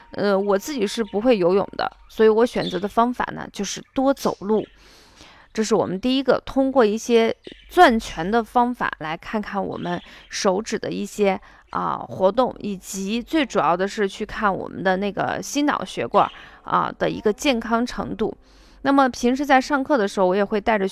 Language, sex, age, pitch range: Chinese, female, 20-39, 195-265 Hz